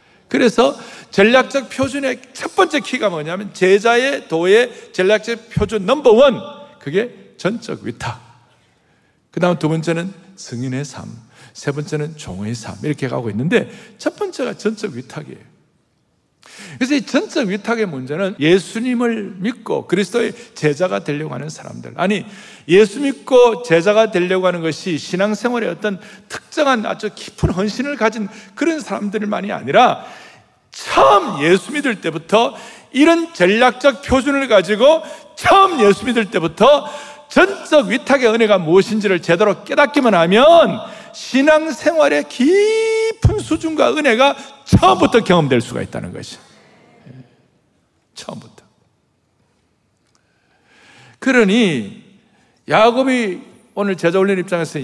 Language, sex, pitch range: Korean, male, 180-275 Hz